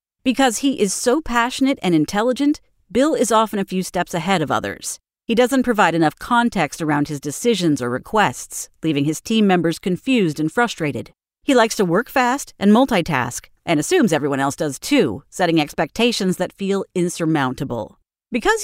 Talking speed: 165 wpm